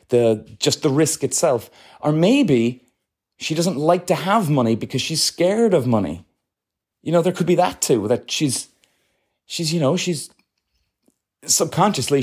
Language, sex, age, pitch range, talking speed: English, male, 30-49, 125-175 Hz, 155 wpm